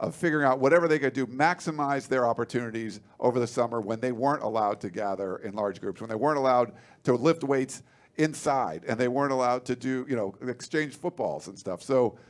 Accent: American